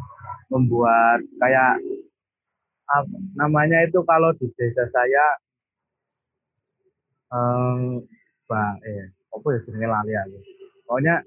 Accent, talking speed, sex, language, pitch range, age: native, 75 wpm, male, Indonesian, 110-140 Hz, 30-49